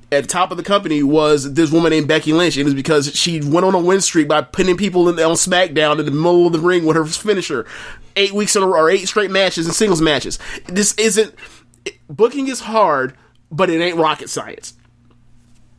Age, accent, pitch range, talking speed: 20-39, American, 125-165 Hz, 230 wpm